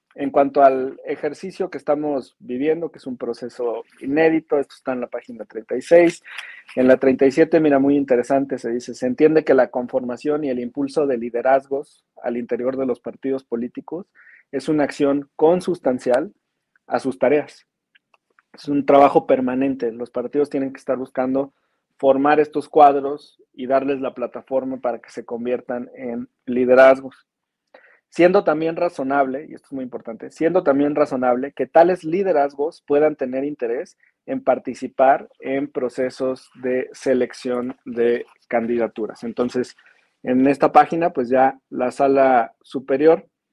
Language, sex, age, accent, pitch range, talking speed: Spanish, male, 40-59, Mexican, 130-150 Hz, 145 wpm